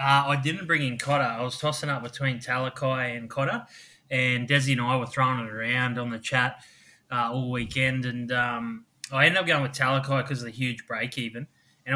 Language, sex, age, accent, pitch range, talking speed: English, male, 20-39, Australian, 125-145 Hz, 215 wpm